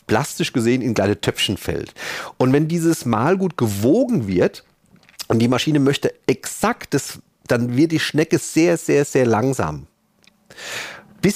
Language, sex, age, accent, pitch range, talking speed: German, male, 40-59, German, 120-175 Hz, 135 wpm